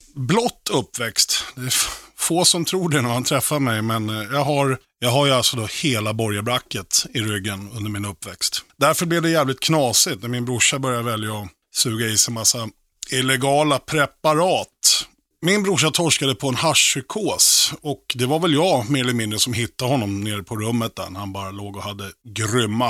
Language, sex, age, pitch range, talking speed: Swedish, male, 30-49, 110-150 Hz, 190 wpm